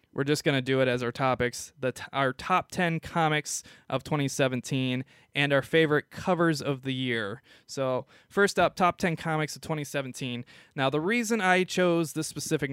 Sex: male